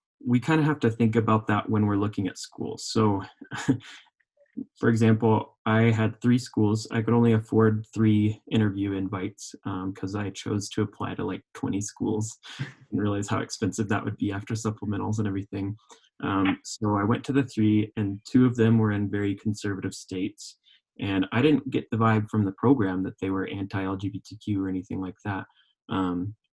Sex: male